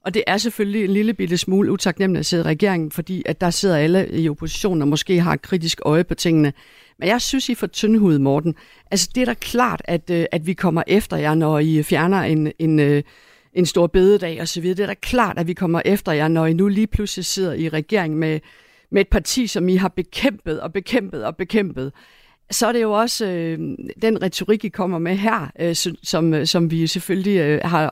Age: 60-79